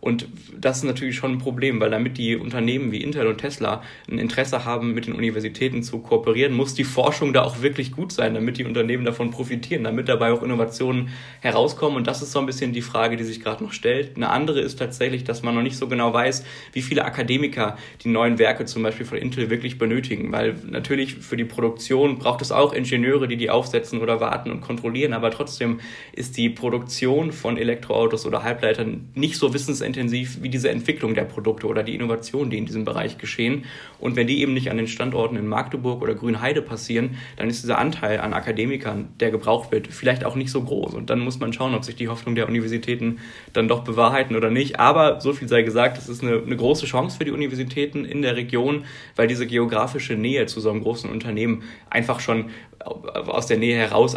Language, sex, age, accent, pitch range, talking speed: German, male, 20-39, German, 115-130 Hz, 215 wpm